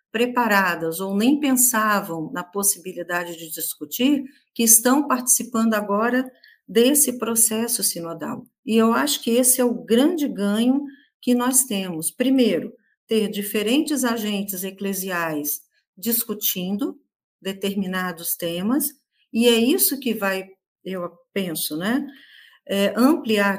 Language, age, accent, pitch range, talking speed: Portuguese, 50-69, Brazilian, 190-245 Hz, 110 wpm